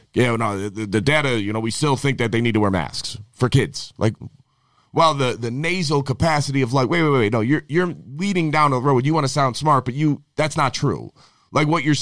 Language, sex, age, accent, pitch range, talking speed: English, male, 30-49, American, 115-150 Hz, 245 wpm